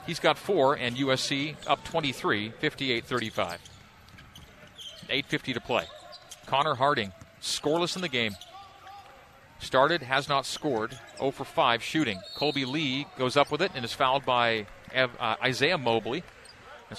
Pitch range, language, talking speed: 125-155 Hz, English, 140 wpm